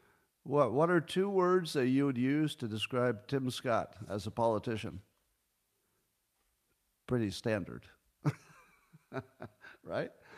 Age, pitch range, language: 50-69, 100-135 Hz, English